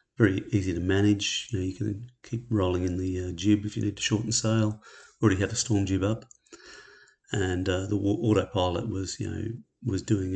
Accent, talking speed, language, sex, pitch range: British, 210 wpm, English, male, 95-115 Hz